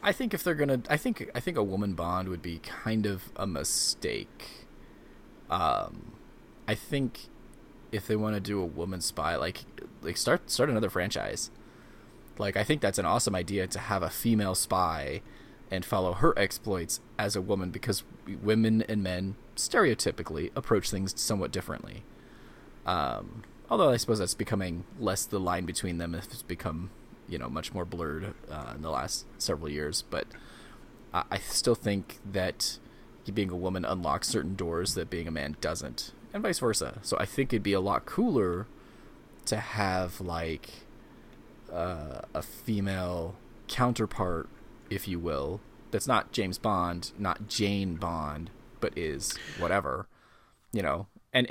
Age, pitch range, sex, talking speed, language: 20-39, 90-110 Hz, male, 160 wpm, English